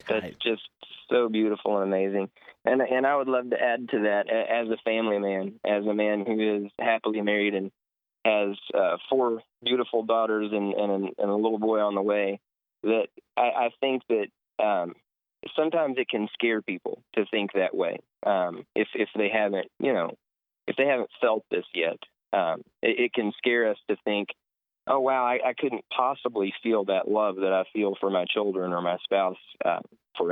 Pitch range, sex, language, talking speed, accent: 100-120 Hz, male, English, 190 wpm, American